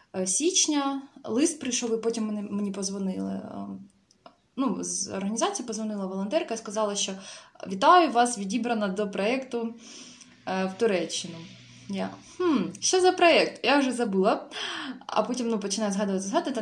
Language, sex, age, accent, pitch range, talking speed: Russian, female, 20-39, native, 200-250 Hz, 135 wpm